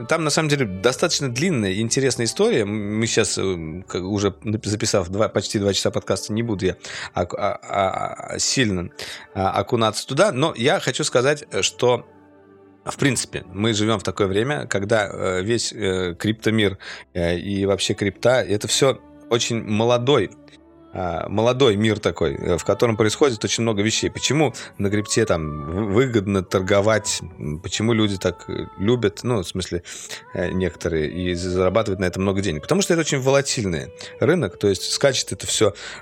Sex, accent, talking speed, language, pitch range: male, native, 140 wpm, Russian, 95-130 Hz